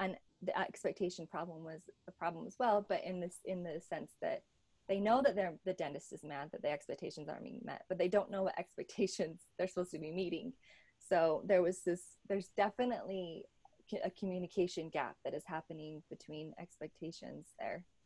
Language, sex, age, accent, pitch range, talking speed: English, female, 20-39, American, 175-205 Hz, 185 wpm